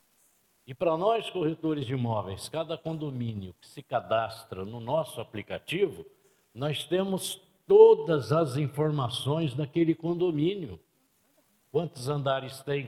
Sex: male